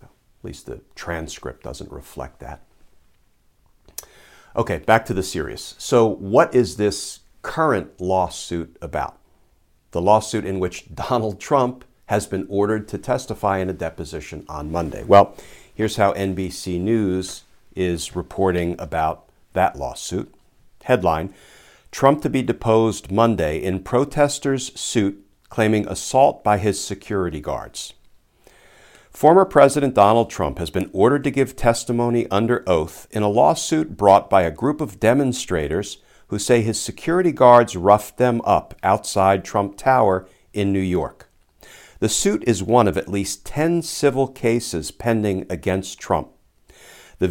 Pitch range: 95-125 Hz